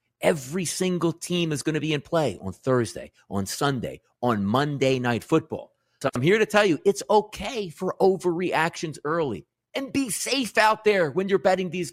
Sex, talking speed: male, 185 wpm